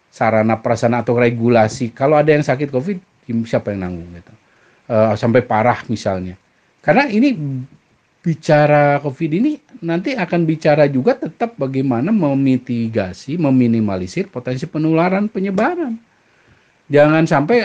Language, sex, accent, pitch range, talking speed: Indonesian, male, native, 115-175 Hz, 120 wpm